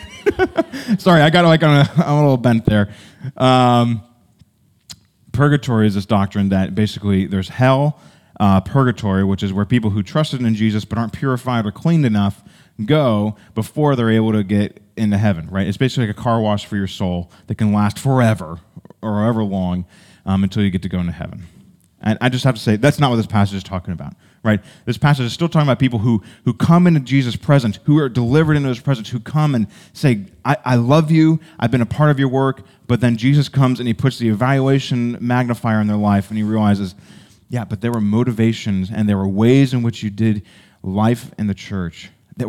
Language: English